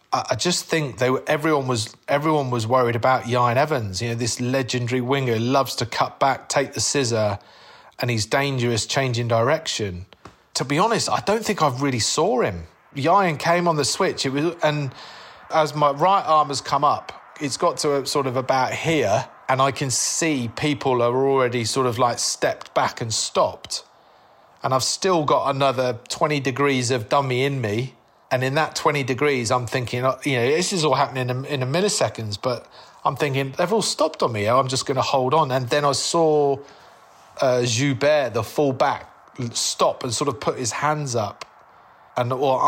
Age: 40-59